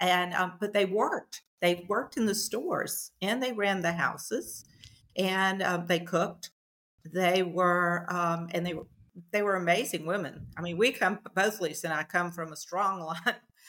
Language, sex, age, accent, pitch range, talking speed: English, female, 50-69, American, 160-185 Hz, 185 wpm